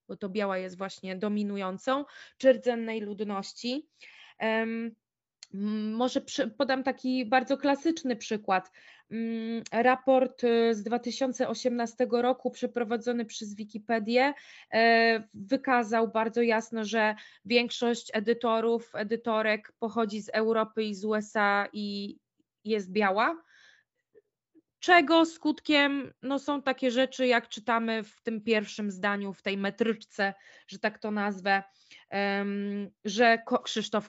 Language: Polish